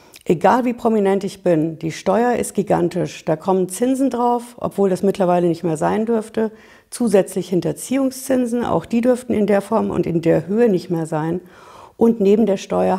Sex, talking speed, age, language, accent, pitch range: female, 180 wpm, 60-79, German, German, 175-225 Hz